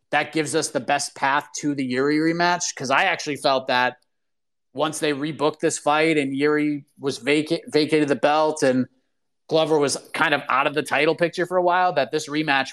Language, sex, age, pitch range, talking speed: English, male, 30-49, 135-160 Hz, 205 wpm